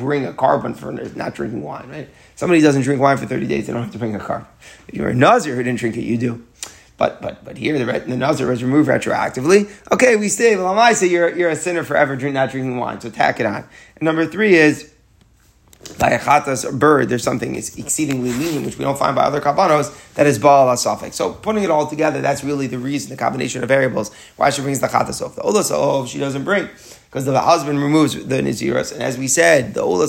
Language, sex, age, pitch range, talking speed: English, male, 30-49, 130-160 Hz, 245 wpm